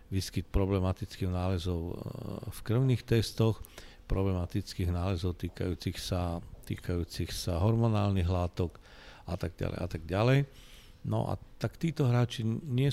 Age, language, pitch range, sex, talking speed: 50-69, Slovak, 85-105 Hz, male, 115 wpm